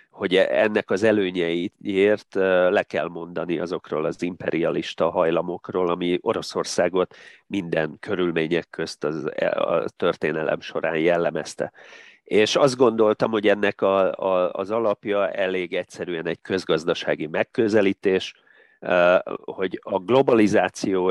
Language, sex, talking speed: Hungarian, male, 100 wpm